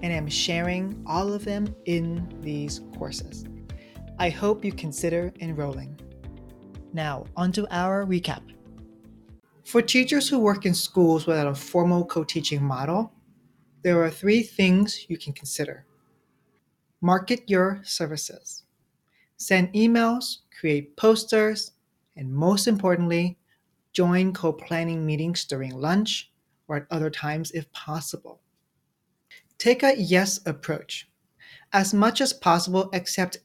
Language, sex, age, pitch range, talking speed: English, male, 40-59, 155-200 Hz, 120 wpm